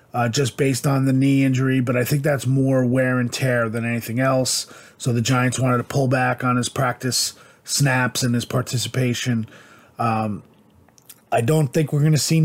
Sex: male